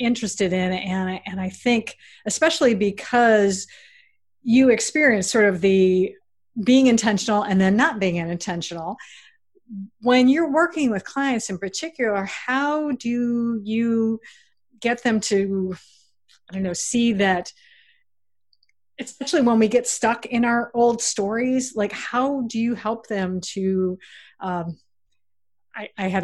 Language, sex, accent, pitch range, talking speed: English, female, American, 185-230 Hz, 135 wpm